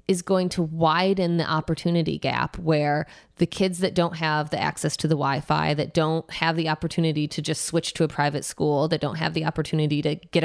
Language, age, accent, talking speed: English, 20-39, American, 210 wpm